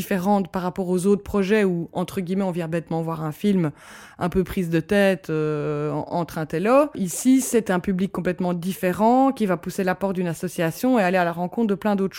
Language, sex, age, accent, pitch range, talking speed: French, female, 20-39, French, 175-205 Hz, 220 wpm